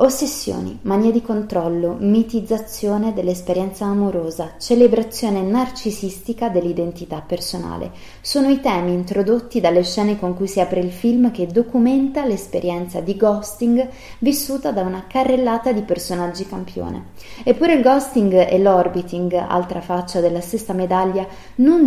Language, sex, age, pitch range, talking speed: Italian, female, 30-49, 185-245 Hz, 125 wpm